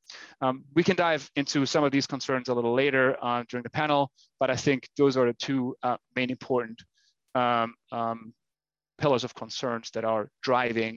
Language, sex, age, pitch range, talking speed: English, male, 30-49, 125-155 Hz, 185 wpm